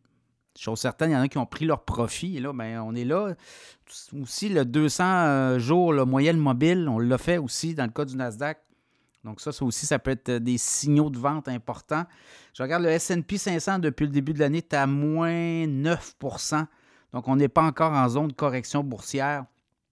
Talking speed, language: 210 wpm, French